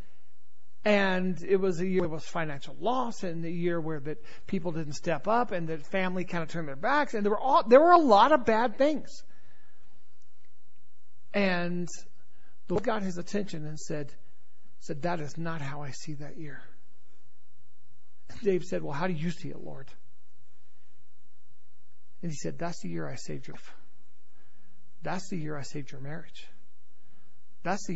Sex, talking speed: male, 175 wpm